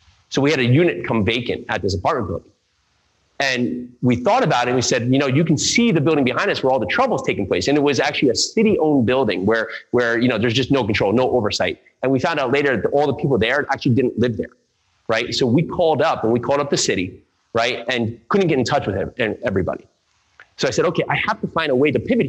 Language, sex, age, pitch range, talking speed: English, male, 30-49, 120-150 Hz, 260 wpm